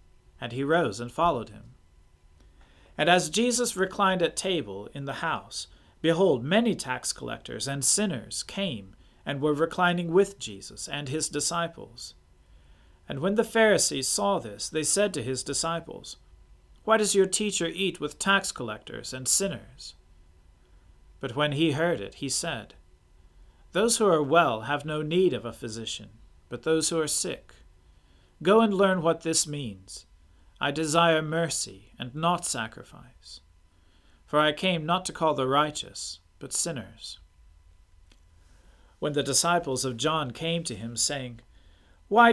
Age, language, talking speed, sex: 40-59, English, 150 wpm, male